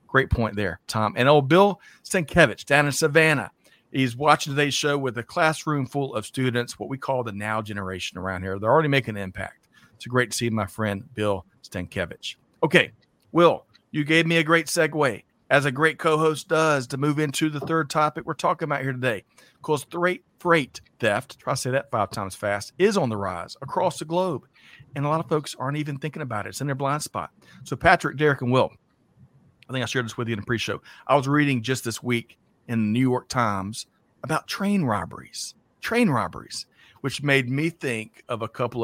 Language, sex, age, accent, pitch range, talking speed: English, male, 40-59, American, 115-155 Hz, 210 wpm